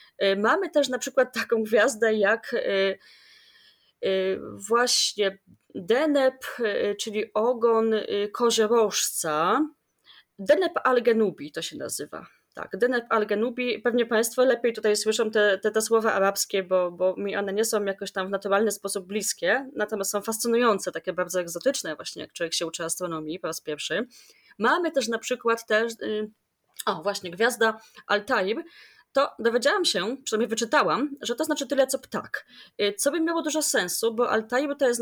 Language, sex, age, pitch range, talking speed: Polish, female, 20-39, 195-255 Hz, 145 wpm